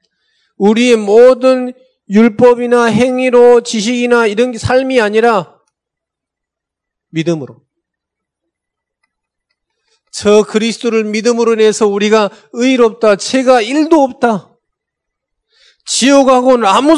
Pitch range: 155-230 Hz